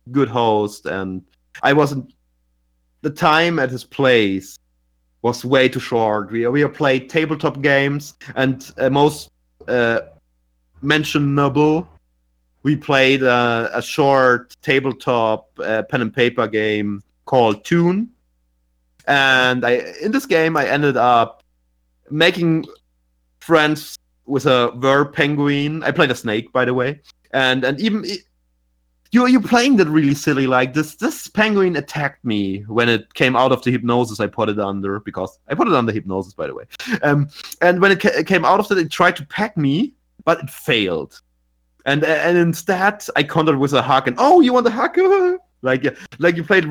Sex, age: male, 30-49